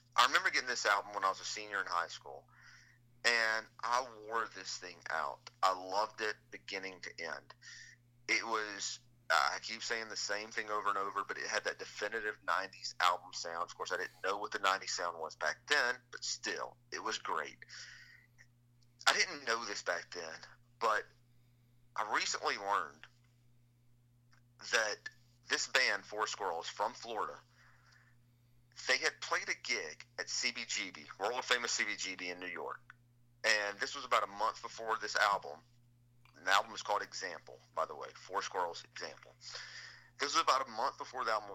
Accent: American